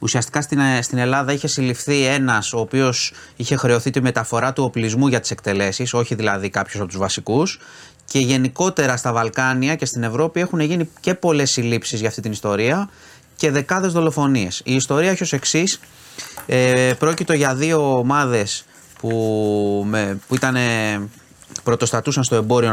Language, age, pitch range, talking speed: Greek, 30-49, 110-150 Hz, 155 wpm